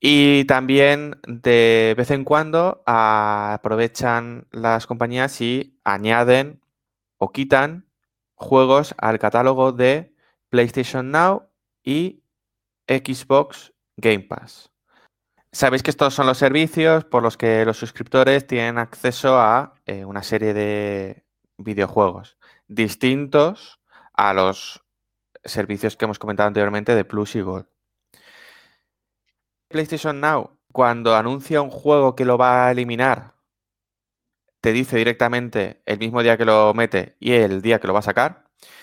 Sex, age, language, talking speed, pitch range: male, 20-39, Spanish, 125 wpm, 110-135 Hz